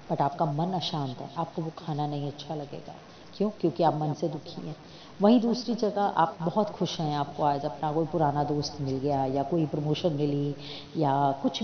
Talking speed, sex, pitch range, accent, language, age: 200 wpm, female, 150-195 Hz, native, Hindi, 30-49